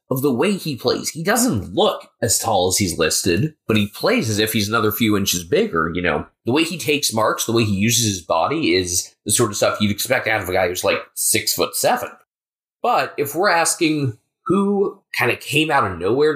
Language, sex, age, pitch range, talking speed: English, male, 20-39, 100-150 Hz, 230 wpm